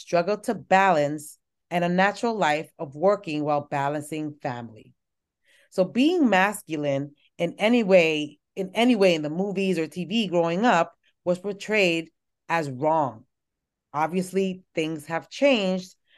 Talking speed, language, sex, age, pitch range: 135 wpm, English, female, 30-49, 155-195 Hz